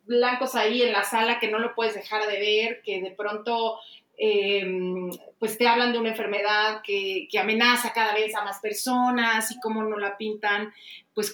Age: 30-49